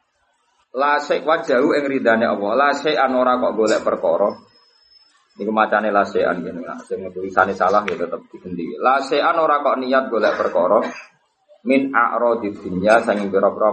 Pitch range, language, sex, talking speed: 105-130 Hz, Indonesian, male, 135 wpm